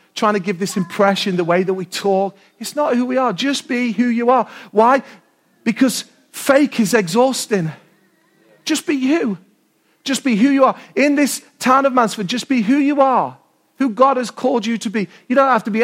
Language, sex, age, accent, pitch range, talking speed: English, male, 40-59, British, 195-260 Hz, 210 wpm